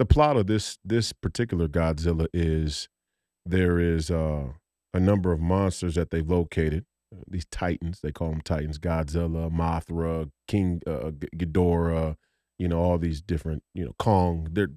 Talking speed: 155 wpm